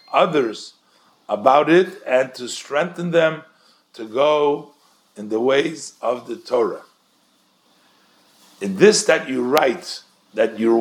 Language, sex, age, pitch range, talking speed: English, male, 50-69, 125-175 Hz, 120 wpm